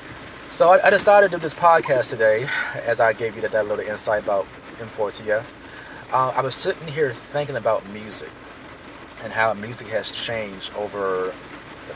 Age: 30-49